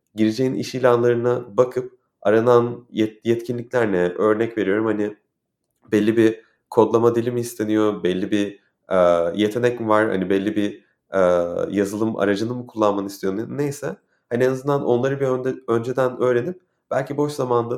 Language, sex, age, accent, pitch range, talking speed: Turkish, male, 30-49, native, 110-135 Hz, 145 wpm